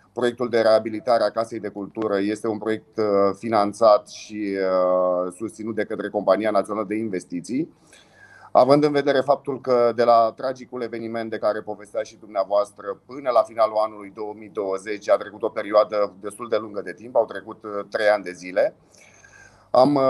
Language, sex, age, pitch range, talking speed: Romanian, male, 30-49, 110-130 Hz, 160 wpm